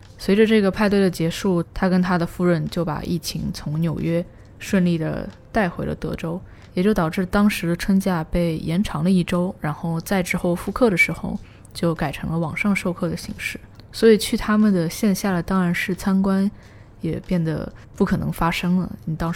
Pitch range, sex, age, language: 160-190 Hz, female, 20-39, Chinese